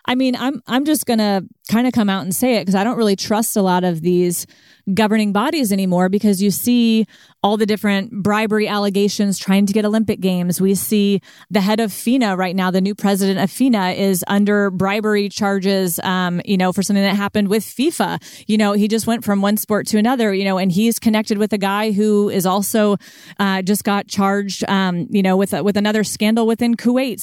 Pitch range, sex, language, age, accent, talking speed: 185-220 Hz, female, English, 30-49, American, 215 wpm